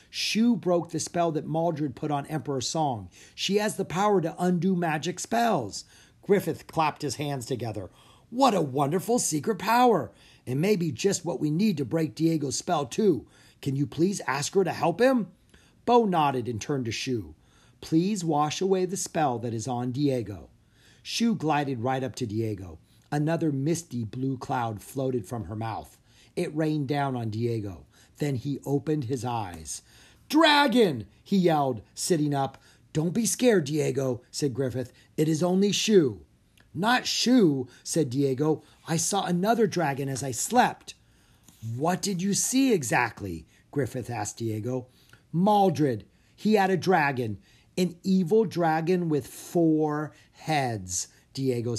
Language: English